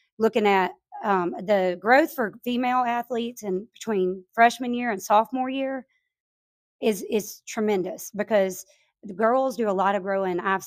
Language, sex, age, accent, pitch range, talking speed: English, female, 30-49, American, 190-235 Hz, 150 wpm